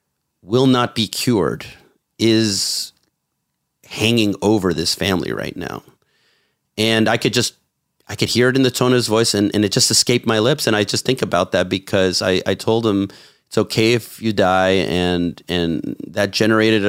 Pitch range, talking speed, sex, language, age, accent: 95-115 Hz, 185 wpm, male, English, 30-49, American